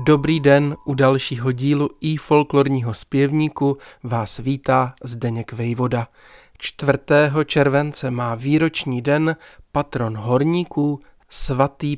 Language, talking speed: Czech, 100 wpm